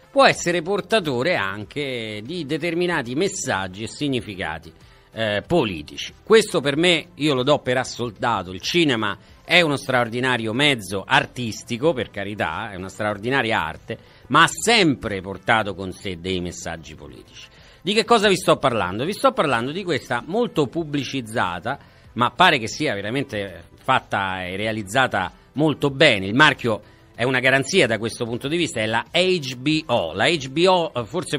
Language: Italian